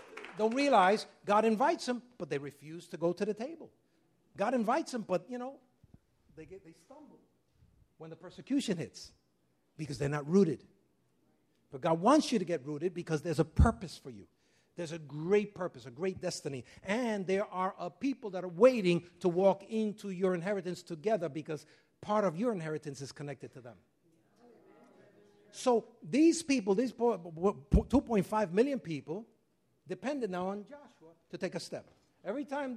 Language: English